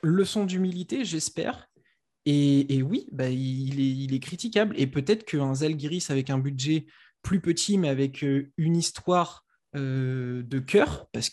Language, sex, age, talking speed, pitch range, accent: French, male, 20-39, 155 wpm, 135-175 Hz, French